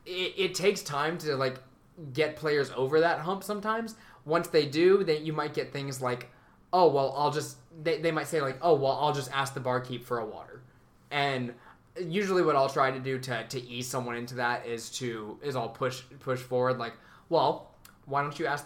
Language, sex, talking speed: English, male, 210 wpm